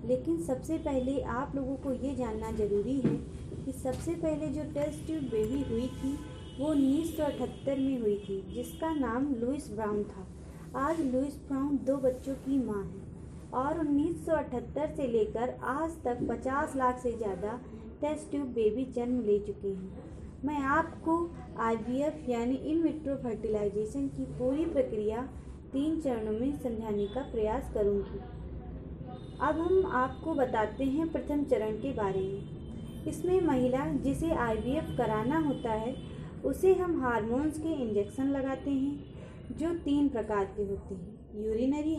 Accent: native